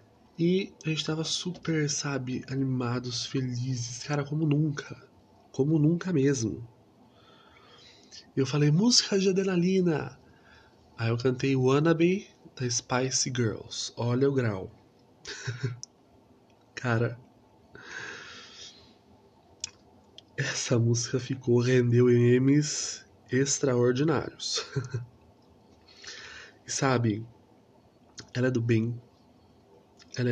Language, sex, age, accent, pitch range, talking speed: Portuguese, male, 20-39, Brazilian, 120-140 Hz, 90 wpm